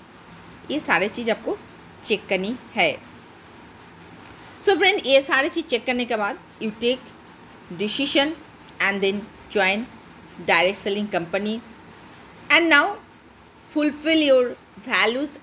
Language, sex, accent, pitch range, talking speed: Hindi, female, native, 200-280 Hz, 120 wpm